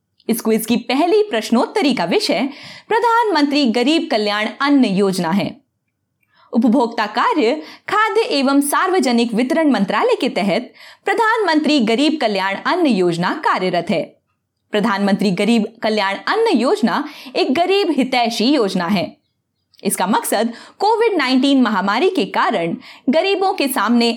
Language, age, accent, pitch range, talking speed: Hindi, 20-39, native, 215-325 Hz, 120 wpm